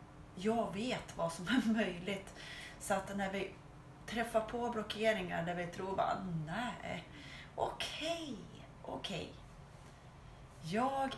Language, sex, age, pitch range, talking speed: Swedish, female, 30-49, 165-210 Hz, 125 wpm